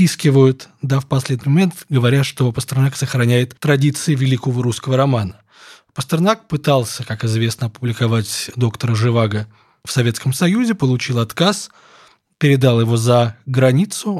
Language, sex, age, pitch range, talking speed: Russian, male, 20-39, 120-145 Hz, 120 wpm